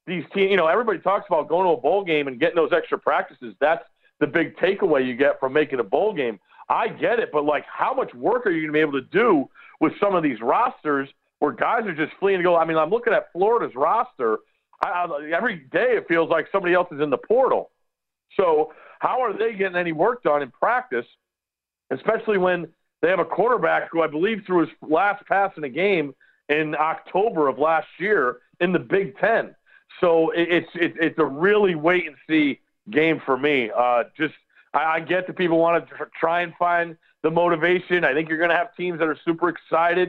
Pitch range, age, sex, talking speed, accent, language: 155-180 Hz, 50-69, male, 215 wpm, American, English